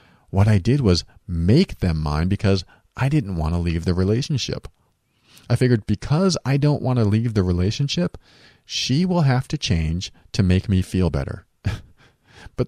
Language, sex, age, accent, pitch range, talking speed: English, male, 40-59, American, 95-125 Hz, 170 wpm